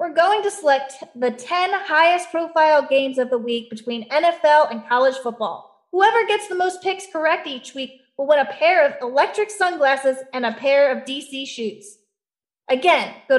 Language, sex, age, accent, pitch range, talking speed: English, female, 30-49, American, 250-315 Hz, 180 wpm